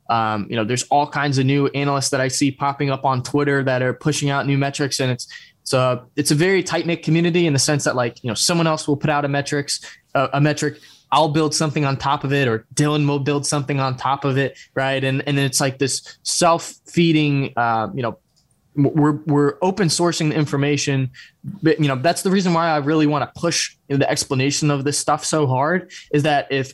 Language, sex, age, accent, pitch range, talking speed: English, male, 20-39, American, 130-150 Hz, 240 wpm